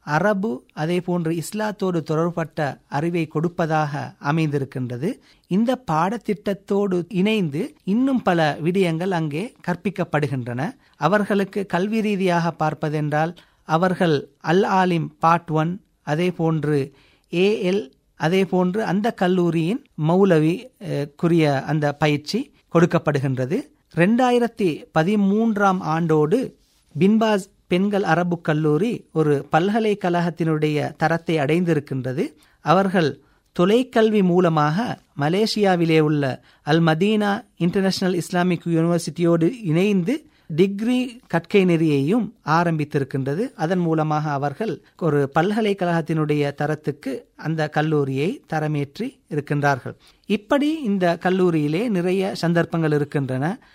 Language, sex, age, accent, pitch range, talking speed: Tamil, male, 50-69, native, 155-200 Hz, 85 wpm